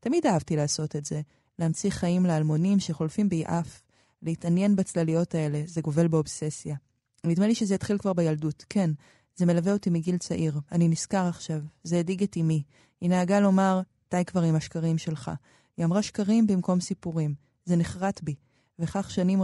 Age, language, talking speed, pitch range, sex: 20-39, Hebrew, 165 wpm, 160-195 Hz, female